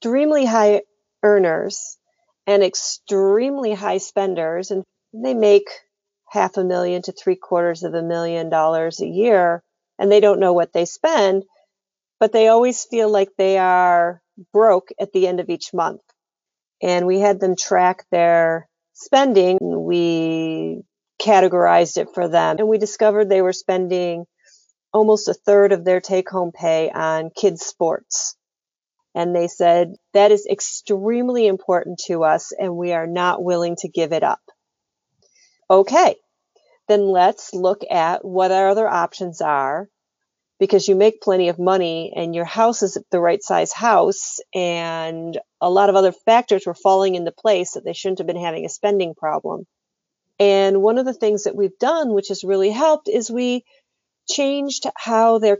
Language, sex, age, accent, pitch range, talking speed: English, female, 40-59, American, 175-215 Hz, 160 wpm